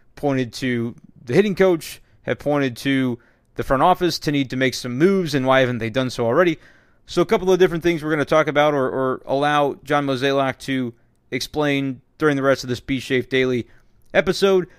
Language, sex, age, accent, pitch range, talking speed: English, male, 30-49, American, 130-155 Hz, 205 wpm